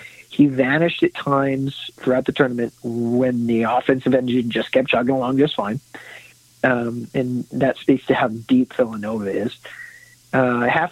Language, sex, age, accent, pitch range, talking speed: English, male, 40-59, American, 125-145 Hz, 155 wpm